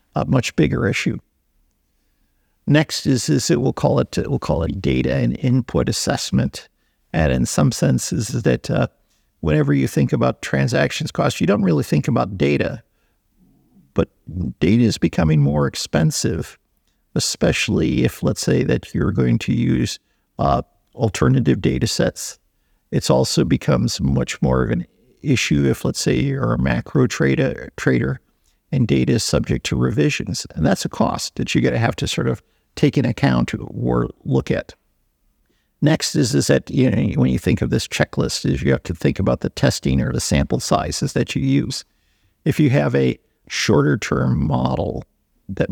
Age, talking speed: 50-69, 175 wpm